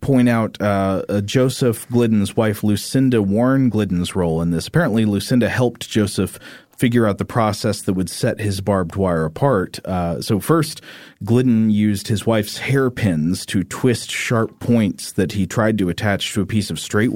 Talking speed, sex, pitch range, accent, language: 175 wpm, male, 95-125 Hz, American, English